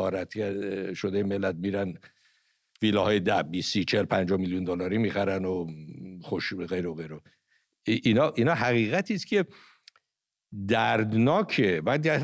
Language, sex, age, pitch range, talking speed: English, male, 60-79, 95-150 Hz, 110 wpm